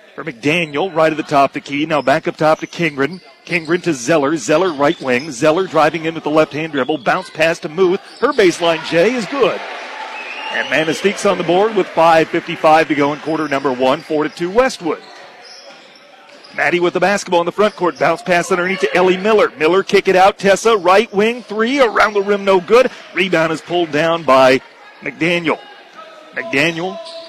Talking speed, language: 185 wpm, English